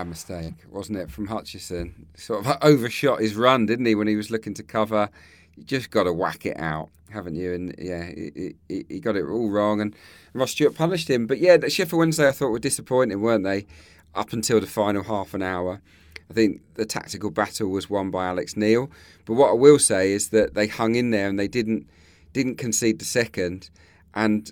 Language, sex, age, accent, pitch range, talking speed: English, male, 40-59, British, 90-110 Hz, 210 wpm